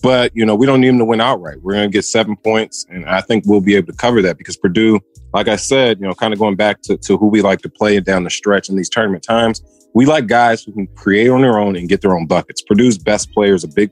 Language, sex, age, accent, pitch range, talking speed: English, male, 30-49, American, 95-115 Hz, 300 wpm